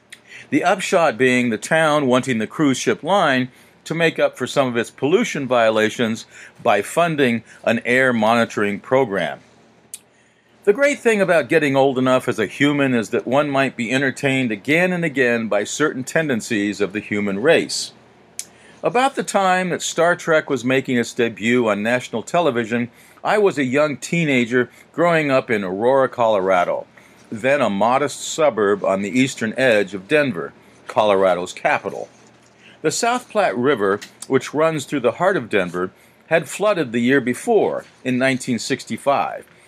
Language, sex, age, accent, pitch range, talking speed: English, male, 50-69, American, 120-160 Hz, 155 wpm